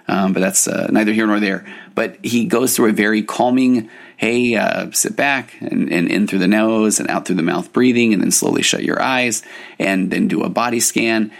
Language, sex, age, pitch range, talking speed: English, male, 30-49, 95-115 Hz, 225 wpm